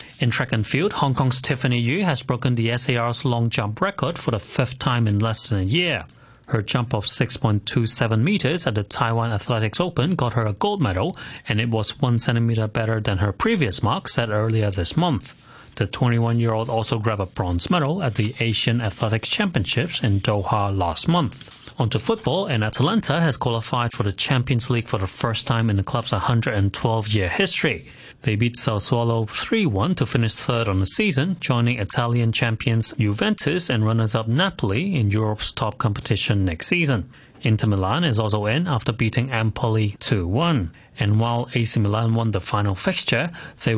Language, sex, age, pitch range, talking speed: English, male, 30-49, 110-130 Hz, 175 wpm